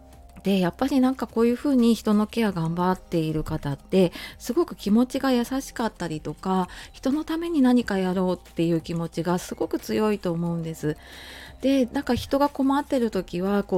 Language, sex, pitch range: Japanese, female, 170-235 Hz